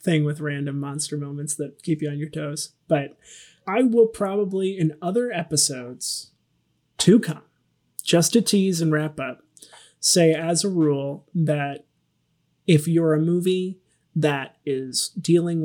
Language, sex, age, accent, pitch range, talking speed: English, male, 30-49, American, 140-165 Hz, 145 wpm